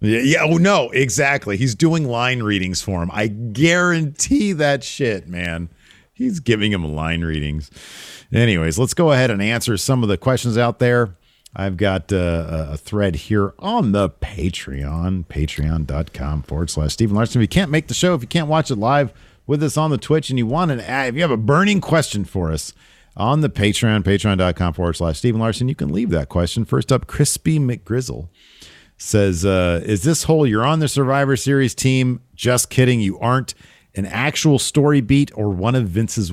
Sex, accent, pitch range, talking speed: male, American, 95-145 Hz, 195 wpm